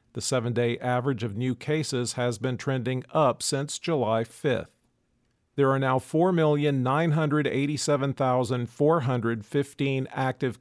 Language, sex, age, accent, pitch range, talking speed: English, male, 50-69, American, 120-145 Hz, 100 wpm